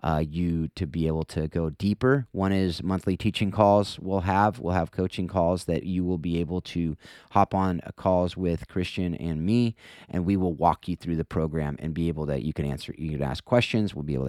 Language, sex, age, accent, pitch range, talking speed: English, male, 30-49, American, 80-95 Hz, 230 wpm